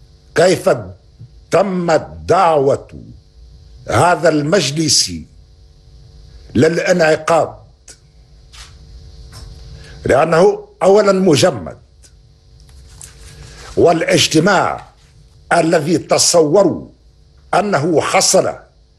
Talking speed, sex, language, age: 45 wpm, male, Arabic, 60-79